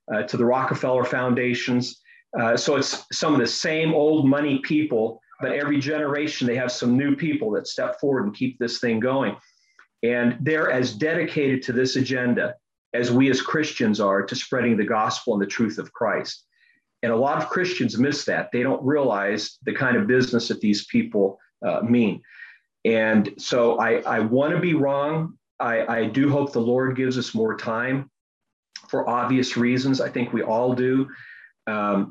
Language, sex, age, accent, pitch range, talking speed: English, male, 40-59, American, 120-145 Hz, 180 wpm